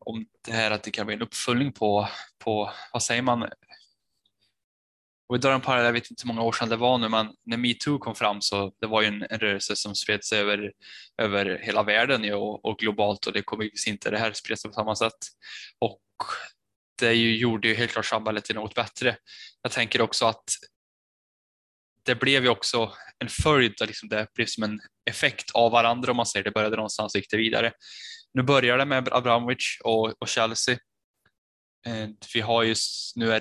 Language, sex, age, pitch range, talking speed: Swedish, male, 10-29, 105-115 Hz, 205 wpm